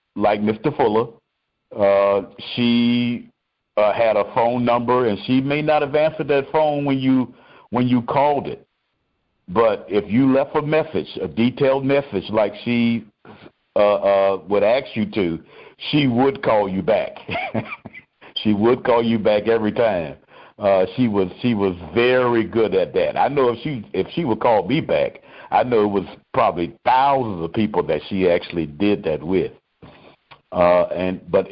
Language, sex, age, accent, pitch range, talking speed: English, male, 50-69, American, 90-130 Hz, 170 wpm